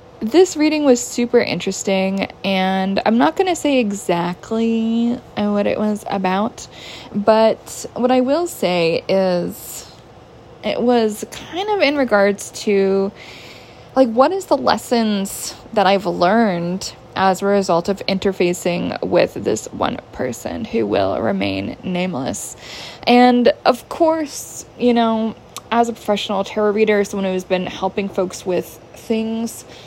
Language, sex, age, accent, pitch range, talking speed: English, female, 20-39, American, 180-240 Hz, 135 wpm